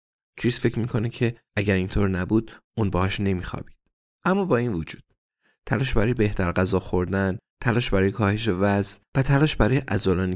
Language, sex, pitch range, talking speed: Persian, male, 90-110 Hz, 160 wpm